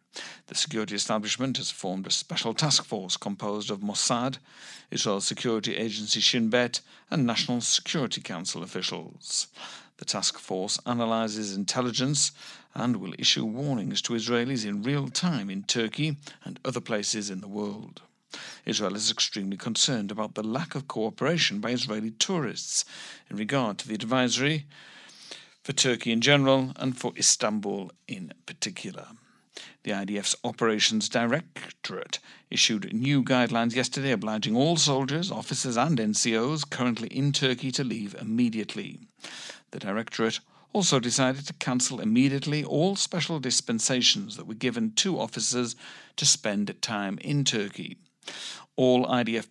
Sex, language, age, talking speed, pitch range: male, English, 60-79, 135 wpm, 110-140 Hz